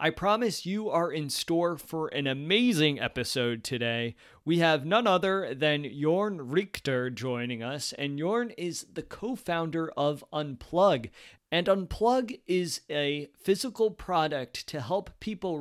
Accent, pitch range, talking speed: American, 130-170 Hz, 140 wpm